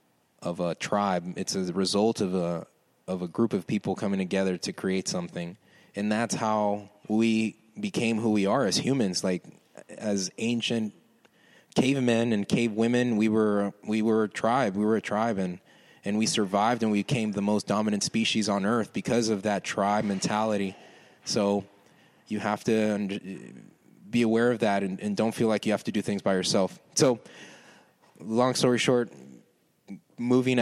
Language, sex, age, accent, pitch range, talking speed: English, male, 20-39, American, 100-115 Hz, 170 wpm